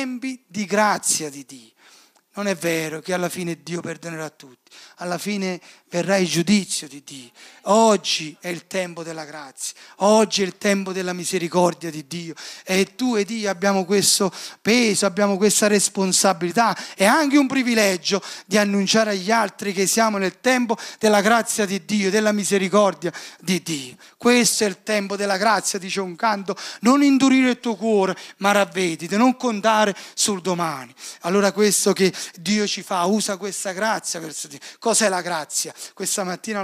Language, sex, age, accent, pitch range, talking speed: Italian, male, 30-49, native, 175-215 Hz, 165 wpm